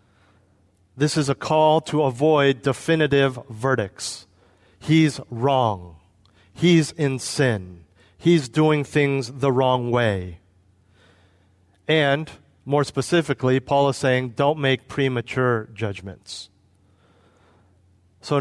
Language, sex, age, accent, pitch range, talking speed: English, male, 40-59, American, 95-150 Hz, 100 wpm